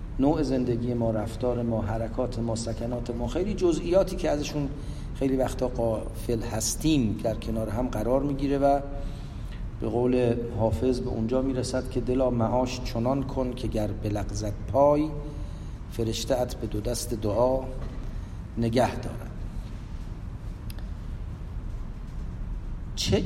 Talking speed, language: 120 wpm, English